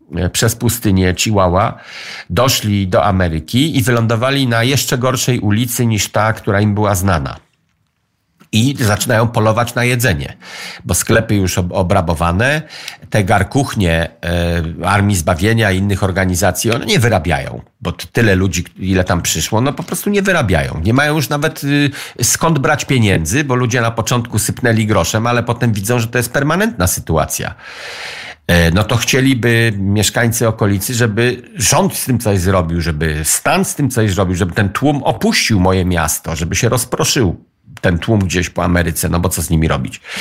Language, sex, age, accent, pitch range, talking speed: Polish, male, 50-69, native, 95-130 Hz, 160 wpm